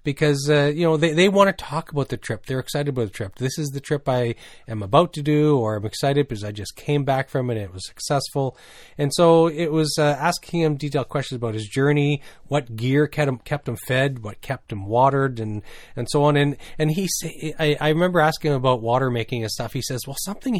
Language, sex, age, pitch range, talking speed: English, male, 30-49, 120-155 Hz, 250 wpm